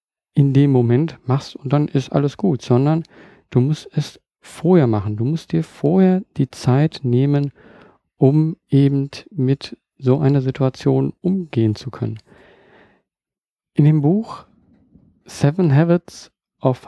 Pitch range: 125-165 Hz